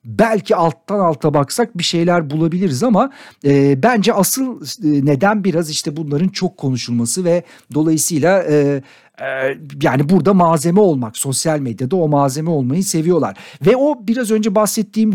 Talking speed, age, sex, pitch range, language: 145 wpm, 60-79, male, 155-210 Hz, Turkish